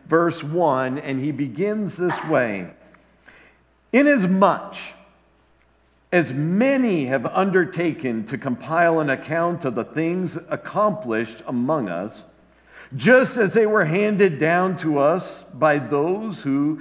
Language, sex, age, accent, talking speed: English, male, 50-69, American, 120 wpm